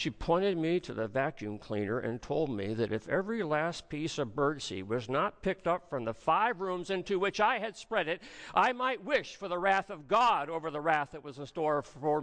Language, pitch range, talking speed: English, 120-160 Hz, 230 wpm